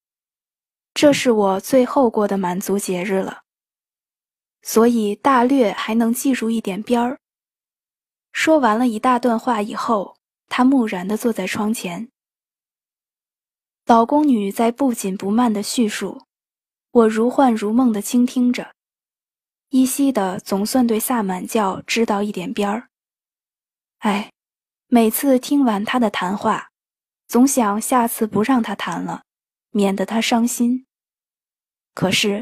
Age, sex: 20-39, female